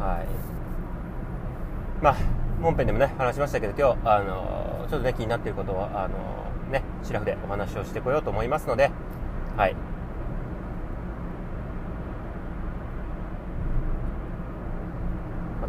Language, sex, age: Japanese, male, 30-49